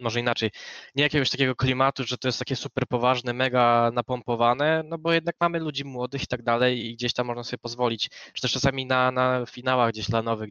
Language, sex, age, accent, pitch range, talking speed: Polish, male, 20-39, native, 120-155 Hz, 210 wpm